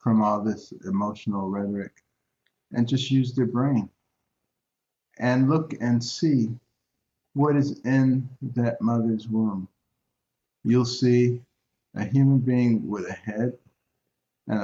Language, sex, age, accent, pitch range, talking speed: English, male, 50-69, American, 105-130 Hz, 120 wpm